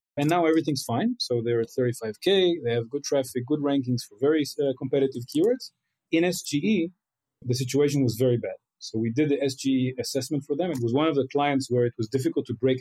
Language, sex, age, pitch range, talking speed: English, male, 40-59, 125-155 Hz, 210 wpm